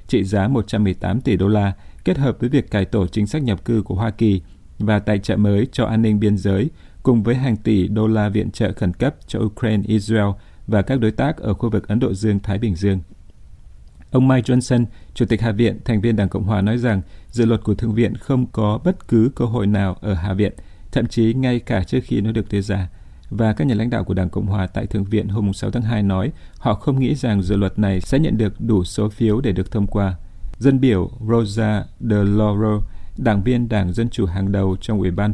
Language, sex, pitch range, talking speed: Vietnamese, male, 100-115 Hz, 240 wpm